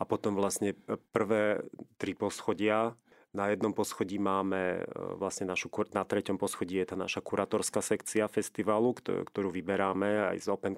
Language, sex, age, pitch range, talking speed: Slovak, male, 30-49, 95-105 Hz, 145 wpm